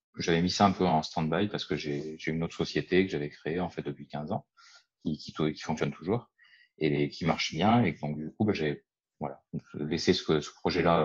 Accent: French